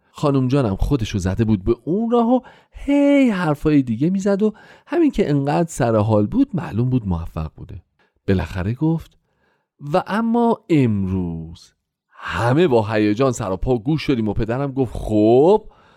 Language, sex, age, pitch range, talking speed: Persian, male, 40-59, 110-185 Hz, 145 wpm